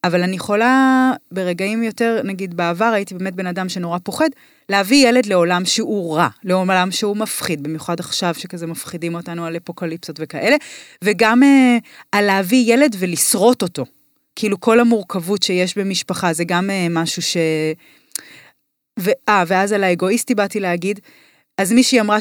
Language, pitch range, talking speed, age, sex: Hebrew, 175-235 Hz, 145 wpm, 30-49, female